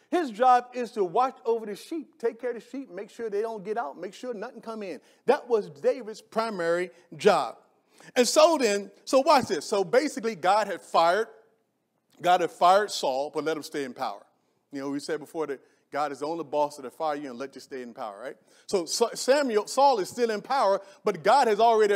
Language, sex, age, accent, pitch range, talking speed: English, male, 40-59, American, 195-255 Hz, 225 wpm